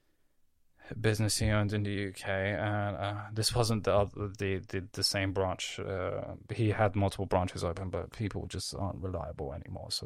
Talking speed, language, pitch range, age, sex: 180 wpm, English, 95-110 Hz, 20-39, male